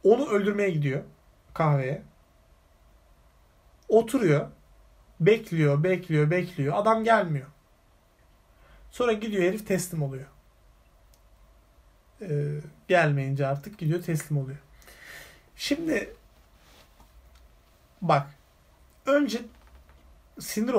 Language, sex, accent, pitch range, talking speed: Turkish, male, native, 140-185 Hz, 70 wpm